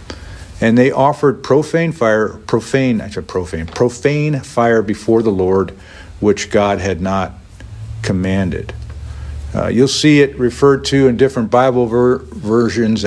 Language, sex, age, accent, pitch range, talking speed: English, male, 50-69, American, 90-125 Hz, 140 wpm